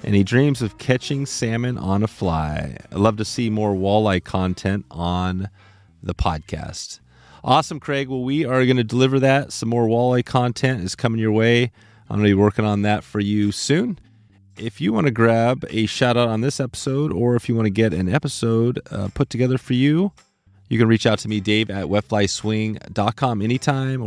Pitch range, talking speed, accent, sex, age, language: 105-130 Hz, 195 wpm, American, male, 30-49, English